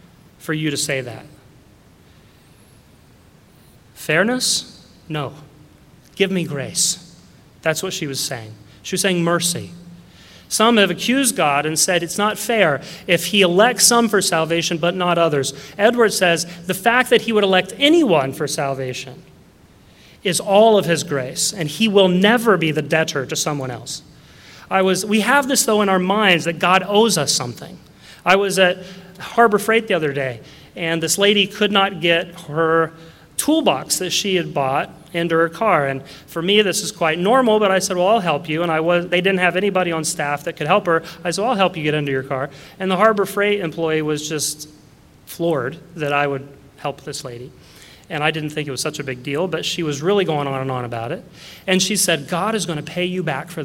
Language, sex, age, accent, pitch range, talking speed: English, male, 30-49, American, 150-190 Hz, 205 wpm